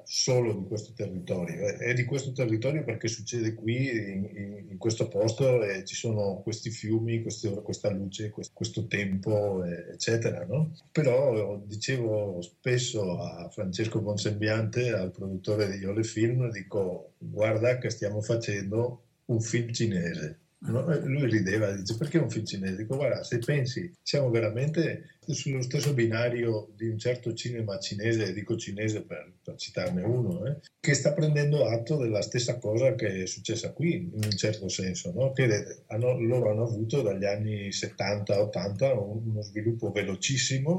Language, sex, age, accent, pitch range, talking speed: Italian, male, 50-69, native, 105-125 Hz, 155 wpm